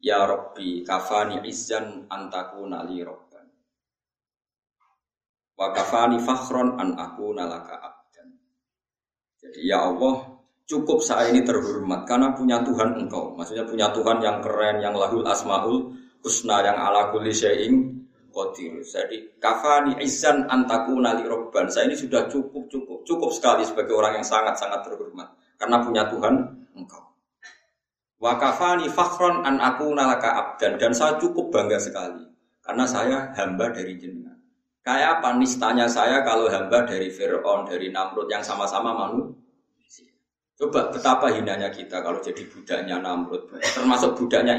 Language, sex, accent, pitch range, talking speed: Indonesian, male, native, 105-160 Hz, 125 wpm